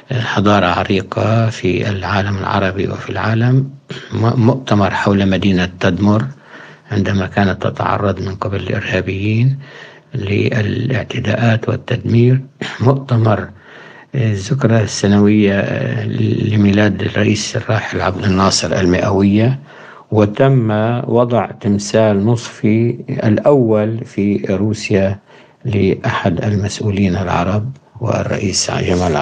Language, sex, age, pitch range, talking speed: Arabic, male, 60-79, 100-115 Hz, 80 wpm